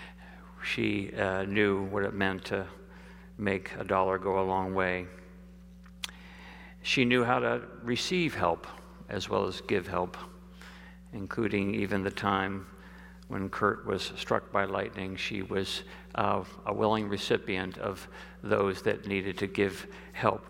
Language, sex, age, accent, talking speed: English, male, 50-69, American, 140 wpm